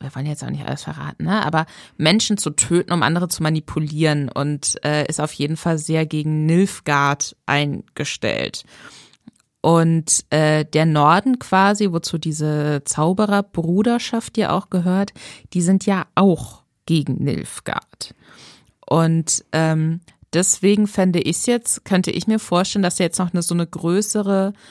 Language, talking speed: German, 145 wpm